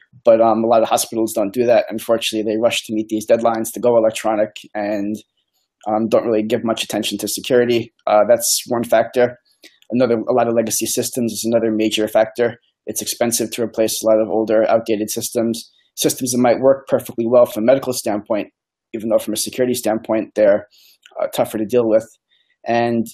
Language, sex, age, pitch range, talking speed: English, male, 20-39, 110-120 Hz, 195 wpm